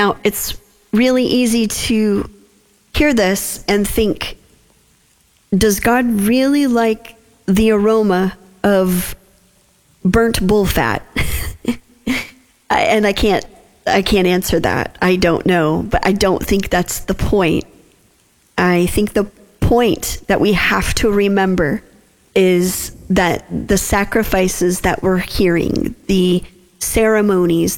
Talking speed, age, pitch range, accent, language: 115 wpm, 40-59, 180-215 Hz, American, English